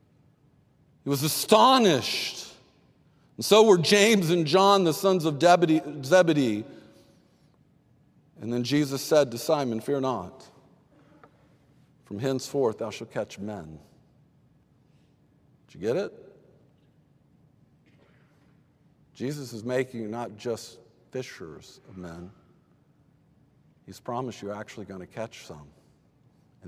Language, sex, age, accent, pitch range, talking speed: English, male, 50-69, American, 110-145 Hz, 110 wpm